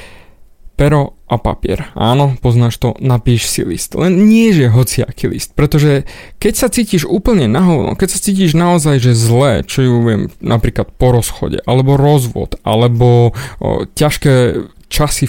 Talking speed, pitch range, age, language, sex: 150 wpm, 125-165 Hz, 20-39, Slovak, male